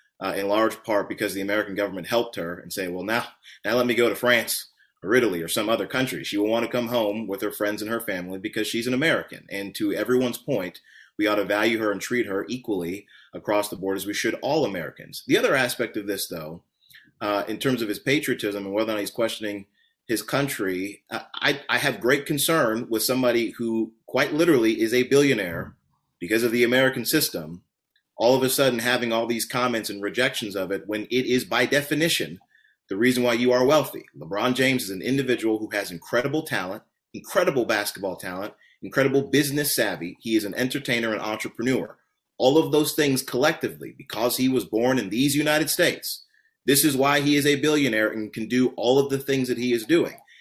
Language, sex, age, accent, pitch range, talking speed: English, male, 30-49, American, 105-135 Hz, 210 wpm